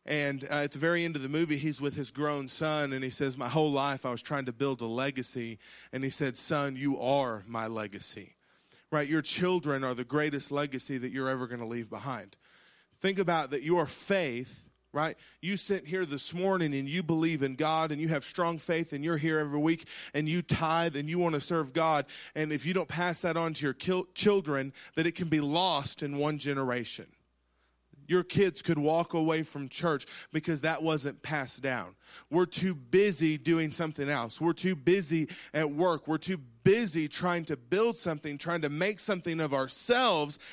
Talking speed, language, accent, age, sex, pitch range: 205 wpm, English, American, 30-49, male, 140-170 Hz